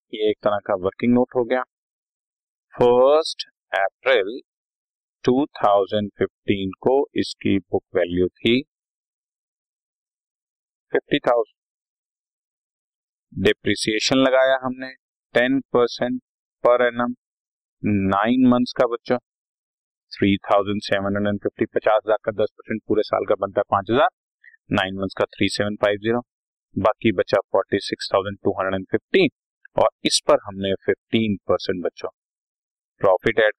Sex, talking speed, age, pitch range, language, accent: male, 120 wpm, 30-49, 100-130 Hz, Hindi, native